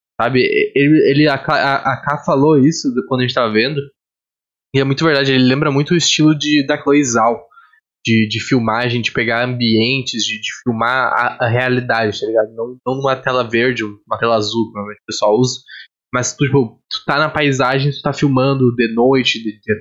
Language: Portuguese